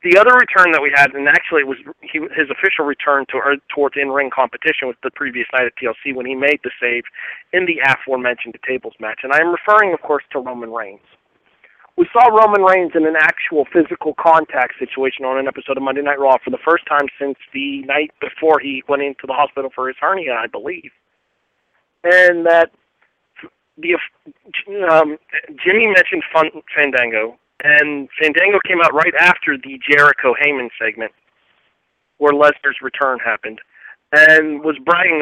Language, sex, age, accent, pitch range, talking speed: English, male, 40-59, American, 135-170 Hz, 170 wpm